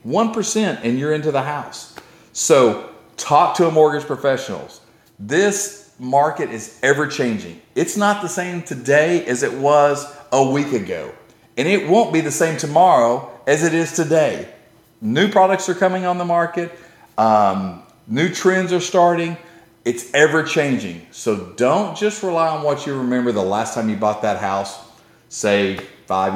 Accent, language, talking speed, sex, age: American, English, 155 wpm, male, 40-59